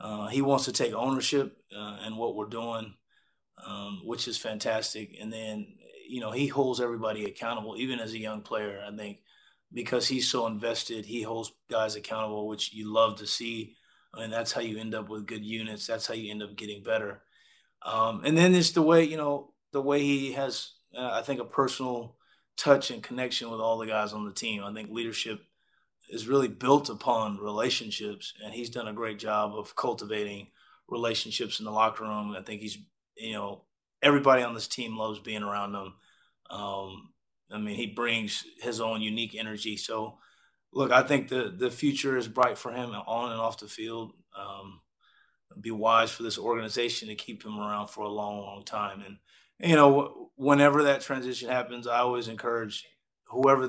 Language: English